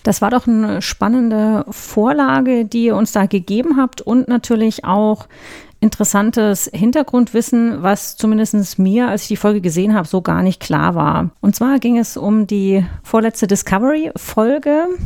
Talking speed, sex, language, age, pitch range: 155 wpm, female, German, 30-49, 190-235 Hz